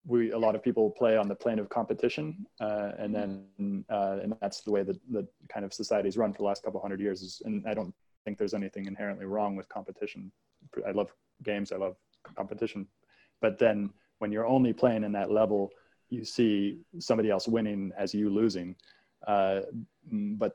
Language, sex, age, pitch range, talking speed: English, male, 20-39, 95-110 Hz, 195 wpm